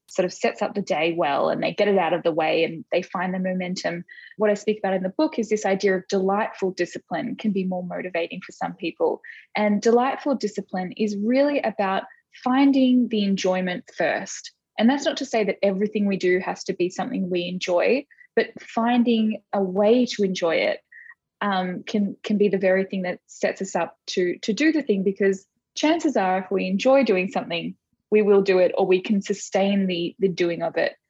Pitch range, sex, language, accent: 185-225 Hz, female, English, Australian